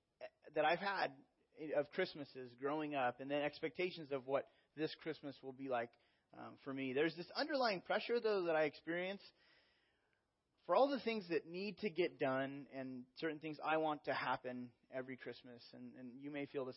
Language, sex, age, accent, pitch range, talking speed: English, male, 30-49, American, 135-180 Hz, 185 wpm